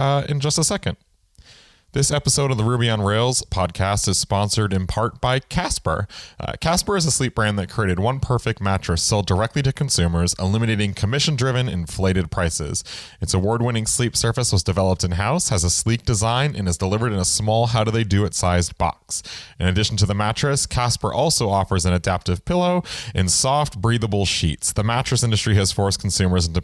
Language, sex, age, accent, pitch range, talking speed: English, male, 30-49, American, 95-130 Hz, 180 wpm